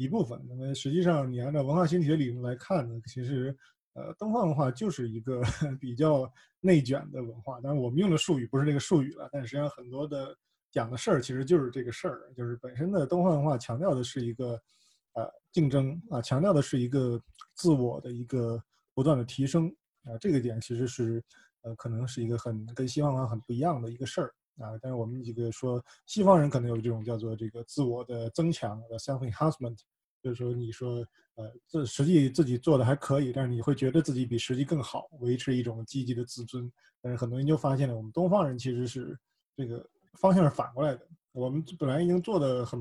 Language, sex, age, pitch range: Chinese, male, 20-39, 120-150 Hz